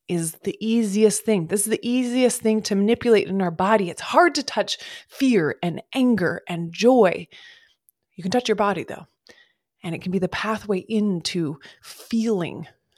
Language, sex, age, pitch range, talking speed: English, female, 20-39, 175-220 Hz, 170 wpm